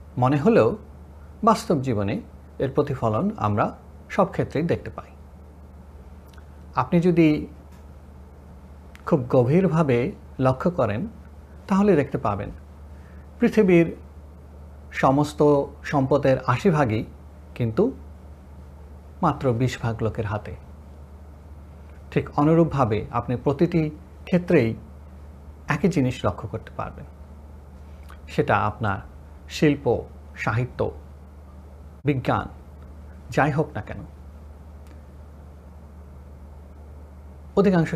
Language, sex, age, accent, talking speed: Bengali, male, 50-69, native, 75 wpm